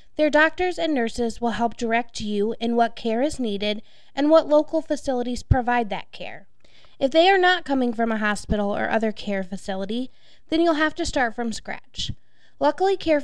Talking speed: 185 wpm